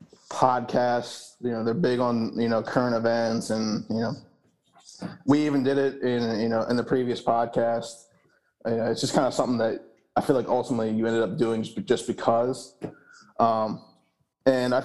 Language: English